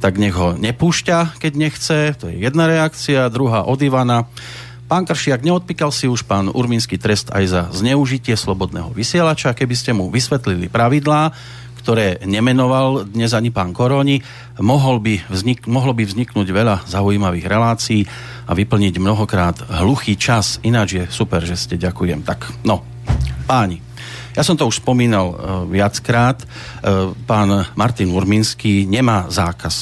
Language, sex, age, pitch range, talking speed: Slovak, male, 40-59, 100-125 Hz, 140 wpm